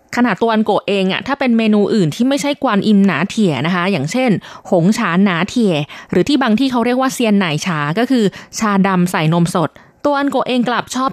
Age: 20-39